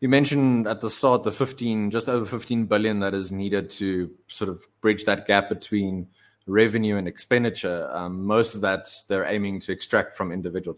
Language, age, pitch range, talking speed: English, 20-39, 90-110 Hz, 190 wpm